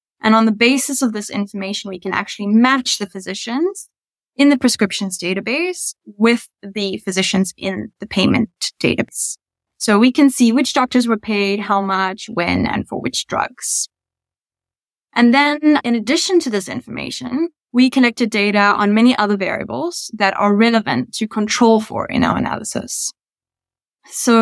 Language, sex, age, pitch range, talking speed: English, female, 10-29, 205-260 Hz, 155 wpm